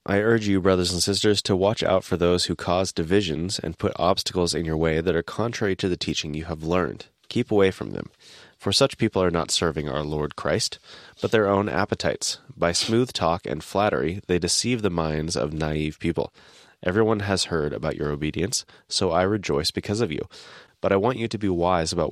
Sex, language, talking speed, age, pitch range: male, English, 210 wpm, 30-49, 85-105 Hz